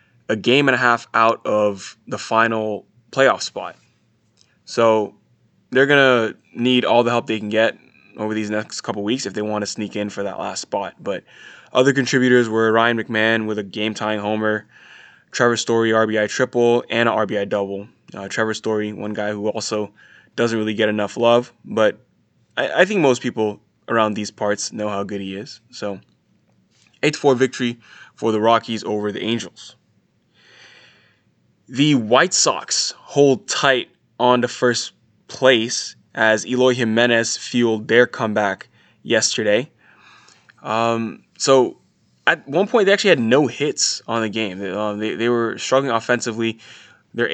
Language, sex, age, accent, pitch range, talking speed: English, male, 20-39, American, 105-120 Hz, 160 wpm